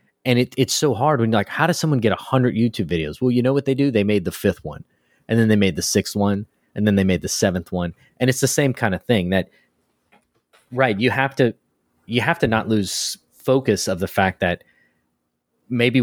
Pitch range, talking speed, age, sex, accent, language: 95-120 Hz, 235 wpm, 30-49, male, American, English